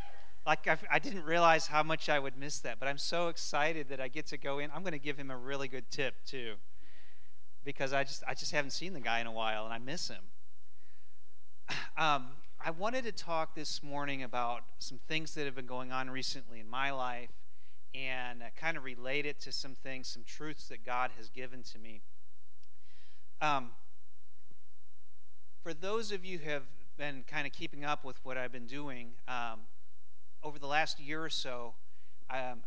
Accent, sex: American, male